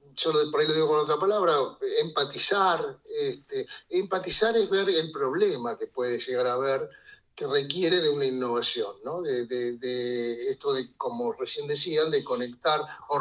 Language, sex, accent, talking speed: Spanish, male, Argentinian, 175 wpm